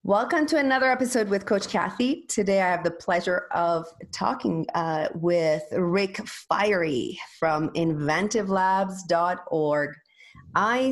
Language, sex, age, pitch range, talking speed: English, female, 30-49, 160-200 Hz, 115 wpm